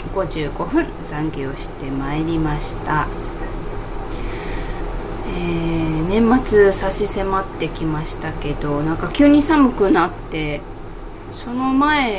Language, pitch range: Japanese, 155-220 Hz